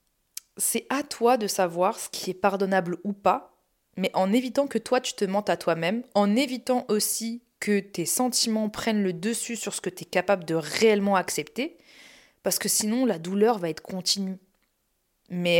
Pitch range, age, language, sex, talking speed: 185-235 Hz, 20-39, French, female, 185 wpm